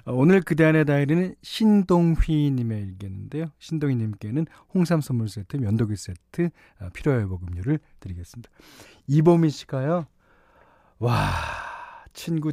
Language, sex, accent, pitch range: Korean, male, native, 110-175 Hz